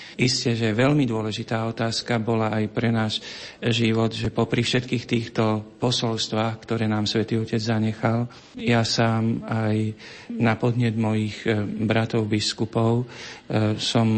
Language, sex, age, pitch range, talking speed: Slovak, male, 40-59, 110-115 Hz, 125 wpm